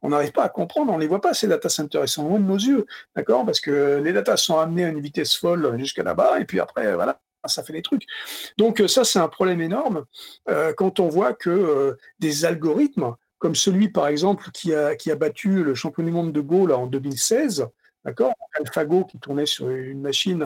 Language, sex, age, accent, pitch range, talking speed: French, male, 60-79, French, 150-210 Hz, 225 wpm